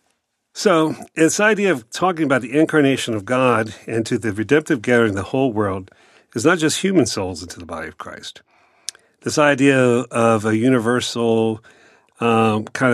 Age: 40-59